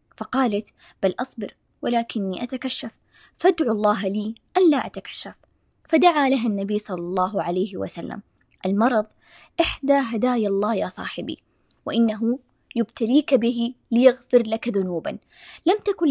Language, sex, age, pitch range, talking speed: Arabic, female, 20-39, 215-270 Hz, 120 wpm